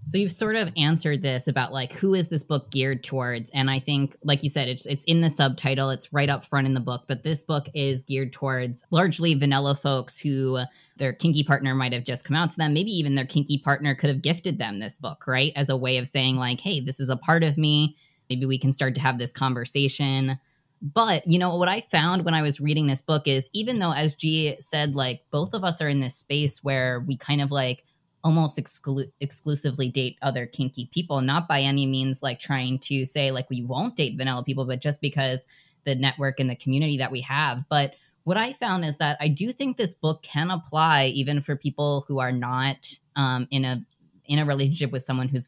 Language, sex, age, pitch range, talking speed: English, female, 10-29, 135-155 Hz, 230 wpm